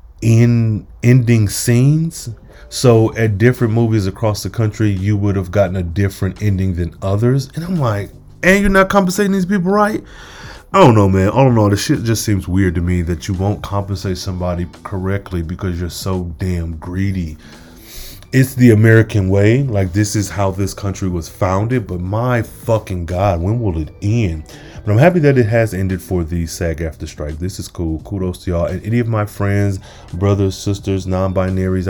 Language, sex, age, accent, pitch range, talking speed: English, male, 20-39, American, 90-115 Hz, 190 wpm